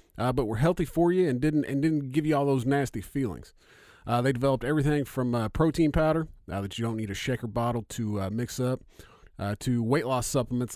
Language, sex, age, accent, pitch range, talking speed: English, male, 40-59, American, 110-145 Hz, 235 wpm